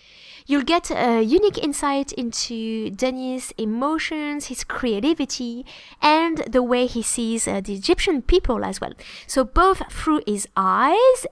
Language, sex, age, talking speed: English, female, 20-39, 140 wpm